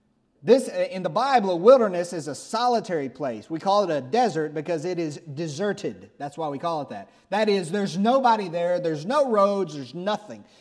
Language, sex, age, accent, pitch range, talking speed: English, male, 30-49, American, 165-235 Hz, 200 wpm